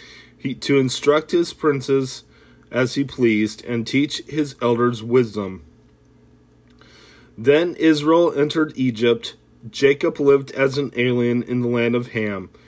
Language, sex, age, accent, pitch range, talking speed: English, male, 30-49, American, 110-140 Hz, 130 wpm